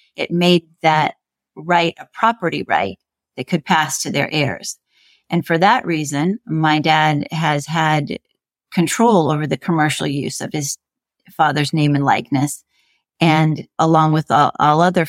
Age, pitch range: 40-59, 150-175 Hz